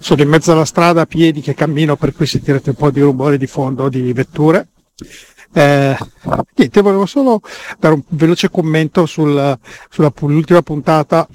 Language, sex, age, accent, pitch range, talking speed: Italian, male, 50-69, native, 140-175 Hz, 160 wpm